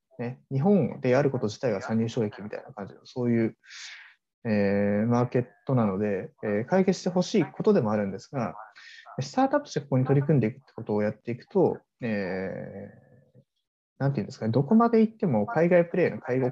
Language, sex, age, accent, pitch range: Japanese, male, 20-39, native, 110-155 Hz